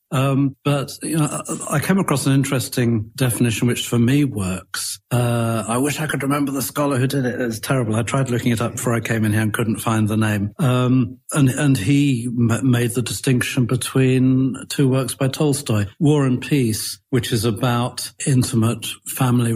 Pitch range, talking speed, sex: 110-130 Hz, 195 wpm, male